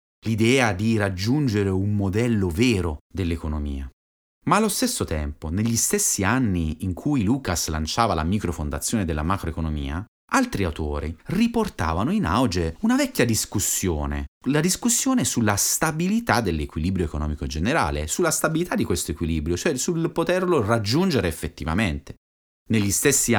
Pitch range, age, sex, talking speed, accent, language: 80-125 Hz, 30-49, male, 125 wpm, native, Italian